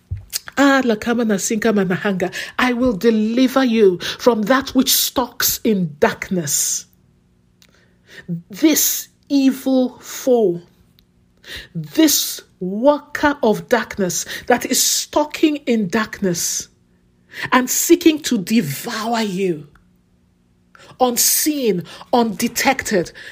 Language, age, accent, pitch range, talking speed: English, 50-69, Nigerian, 190-265 Hz, 75 wpm